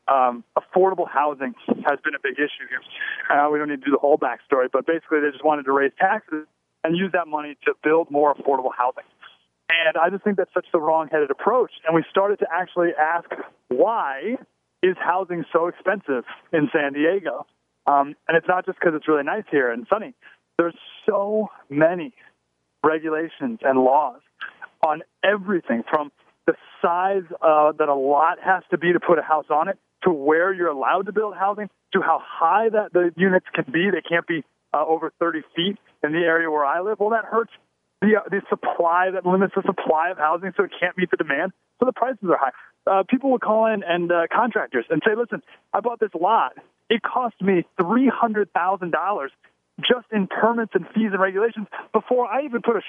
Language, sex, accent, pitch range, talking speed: English, male, American, 155-200 Hz, 200 wpm